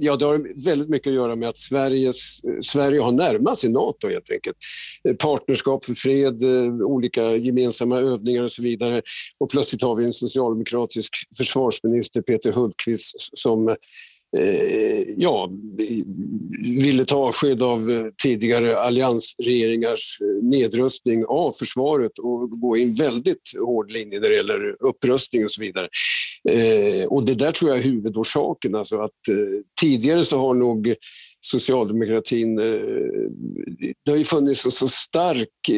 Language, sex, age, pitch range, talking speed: Swedish, male, 50-69, 115-150 Hz, 145 wpm